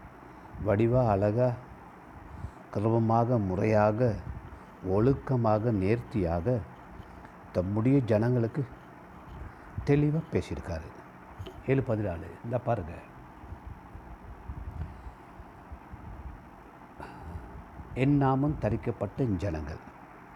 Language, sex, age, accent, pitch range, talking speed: Tamil, male, 60-79, native, 85-125 Hz, 55 wpm